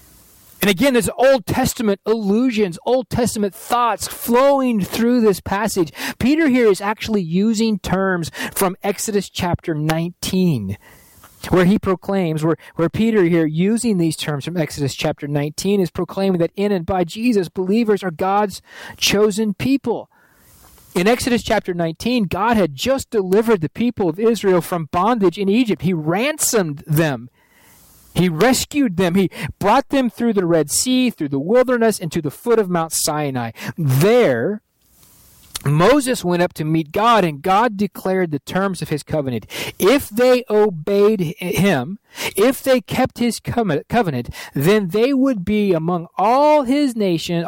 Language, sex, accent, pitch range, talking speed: English, male, American, 170-235 Hz, 150 wpm